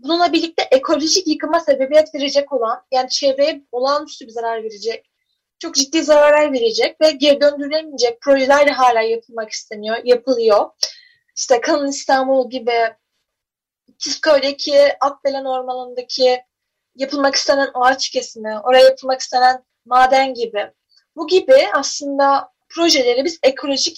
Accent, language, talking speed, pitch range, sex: native, Turkish, 120 wpm, 265-345 Hz, female